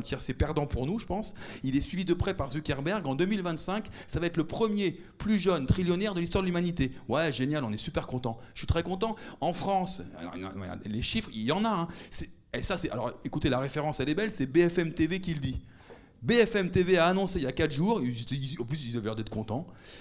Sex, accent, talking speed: male, French, 235 wpm